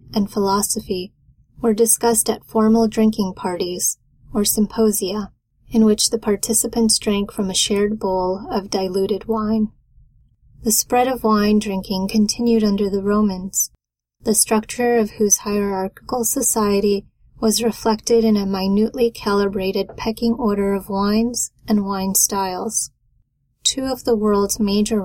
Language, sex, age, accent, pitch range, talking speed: English, female, 20-39, American, 200-225 Hz, 130 wpm